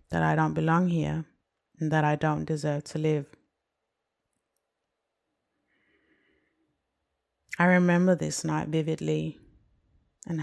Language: English